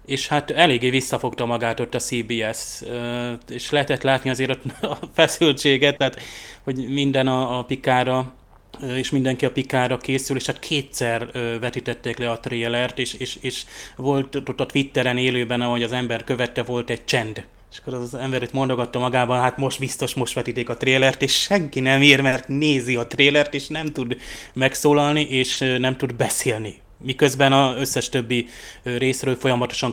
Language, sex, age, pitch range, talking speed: Hungarian, male, 20-39, 120-135 Hz, 165 wpm